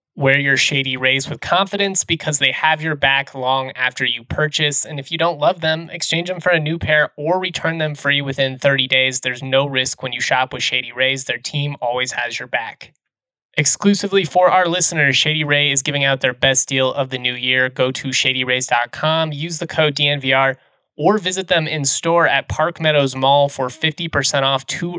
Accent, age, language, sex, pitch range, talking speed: American, 20-39, English, male, 130-155 Hz, 205 wpm